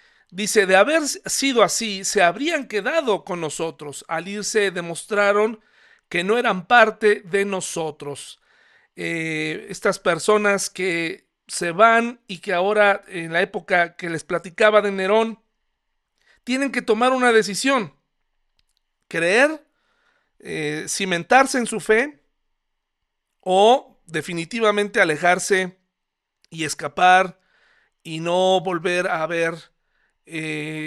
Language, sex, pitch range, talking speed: Spanish, male, 165-210 Hz, 115 wpm